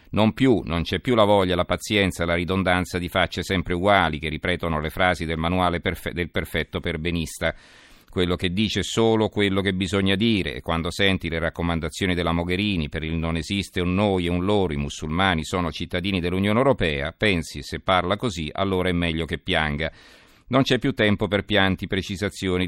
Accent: native